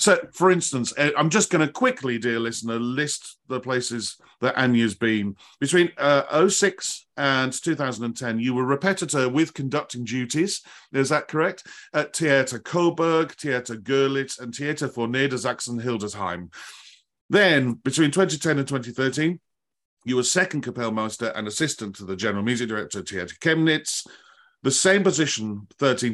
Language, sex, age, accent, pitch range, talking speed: English, male, 40-59, British, 115-150 Hz, 145 wpm